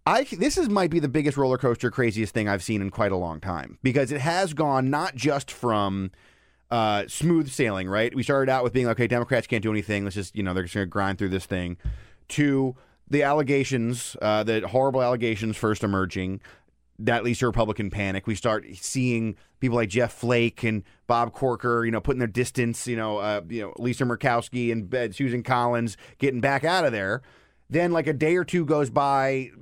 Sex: male